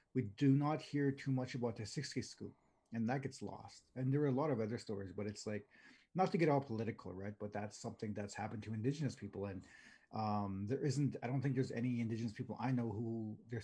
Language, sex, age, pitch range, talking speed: English, male, 30-49, 105-130 Hz, 235 wpm